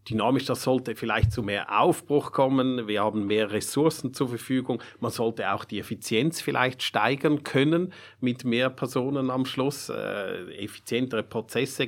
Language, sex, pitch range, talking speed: German, male, 105-130 Hz, 150 wpm